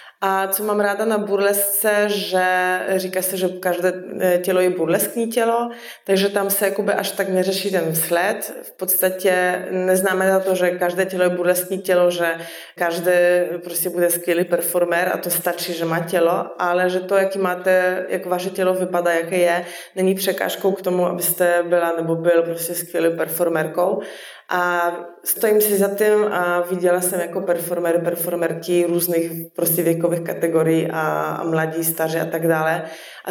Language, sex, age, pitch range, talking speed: Czech, female, 20-39, 165-185 Hz, 165 wpm